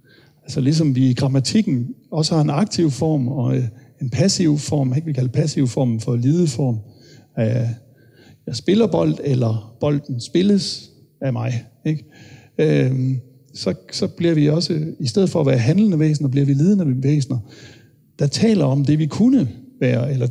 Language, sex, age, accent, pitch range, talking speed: Danish, male, 60-79, native, 130-160 Hz, 160 wpm